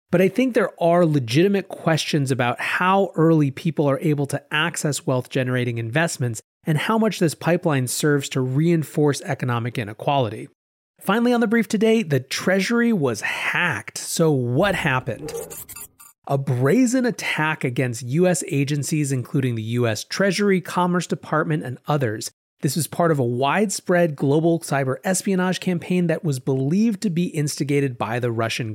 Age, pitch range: 30-49, 135-190 Hz